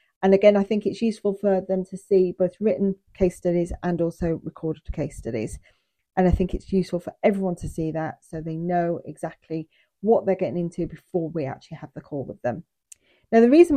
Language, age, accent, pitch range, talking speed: English, 40-59, British, 165-200 Hz, 210 wpm